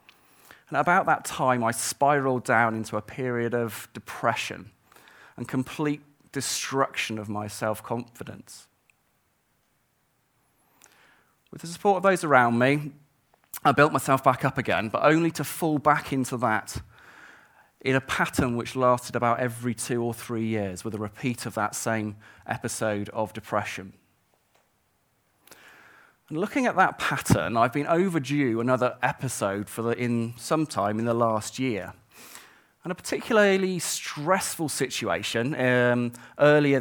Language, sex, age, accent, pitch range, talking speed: English, male, 30-49, British, 115-145 Hz, 135 wpm